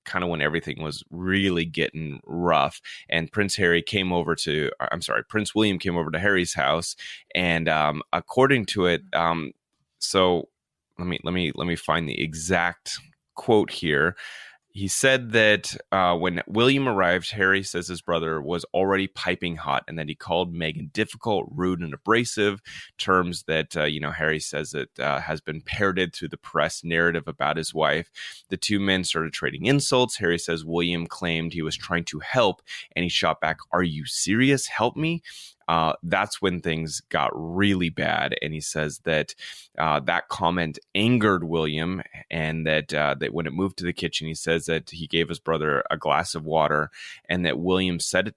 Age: 20-39